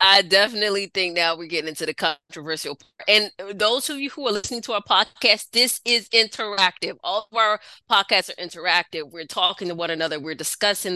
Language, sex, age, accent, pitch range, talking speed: English, female, 20-39, American, 165-215 Hz, 195 wpm